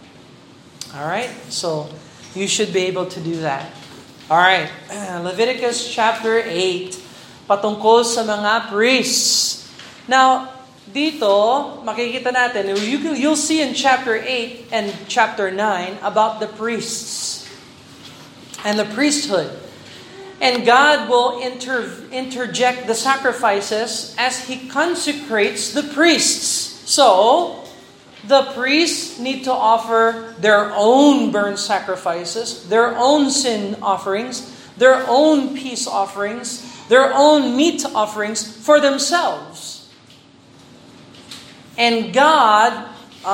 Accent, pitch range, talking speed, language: native, 210-270 Hz, 110 wpm, Filipino